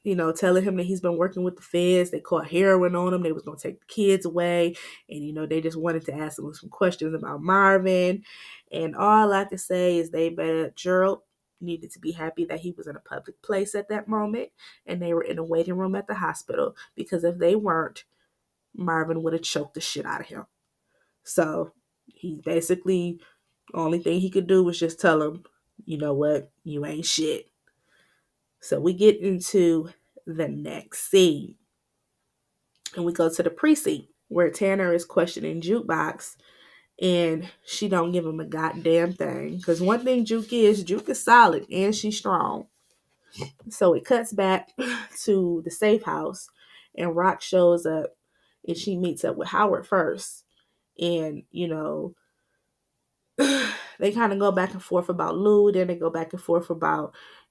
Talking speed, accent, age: 185 wpm, American, 20-39